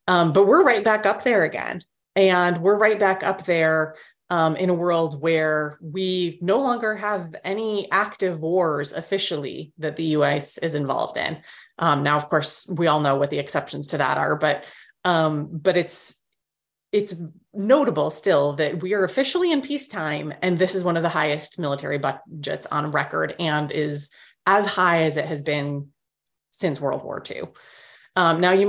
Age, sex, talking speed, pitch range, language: 30-49, female, 180 wpm, 155-190 Hz, English